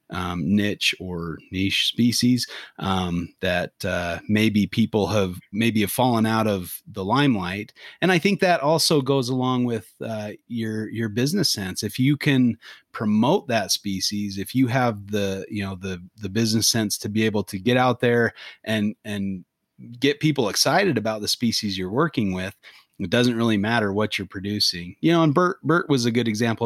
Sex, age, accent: male, 30-49, American